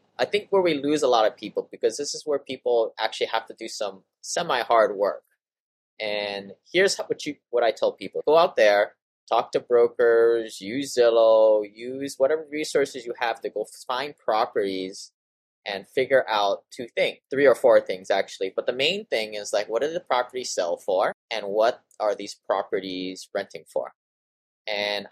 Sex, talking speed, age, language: male, 180 wpm, 20-39, English